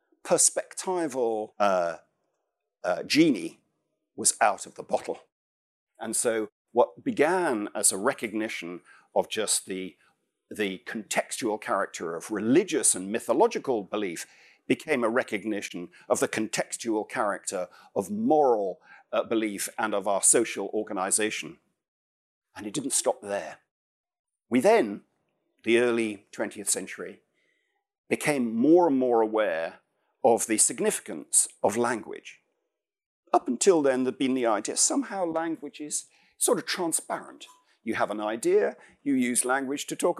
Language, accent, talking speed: English, British, 130 wpm